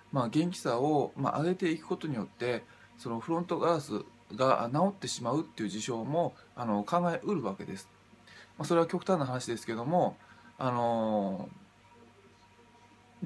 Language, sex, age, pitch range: Japanese, male, 20-39, 120-165 Hz